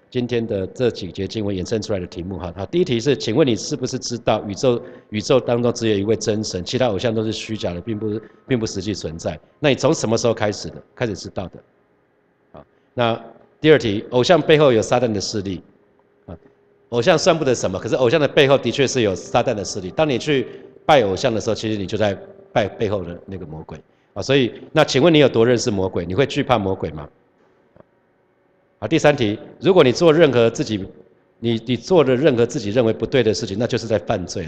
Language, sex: Chinese, male